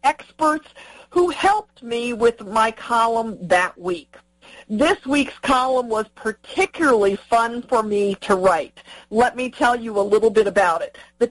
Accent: American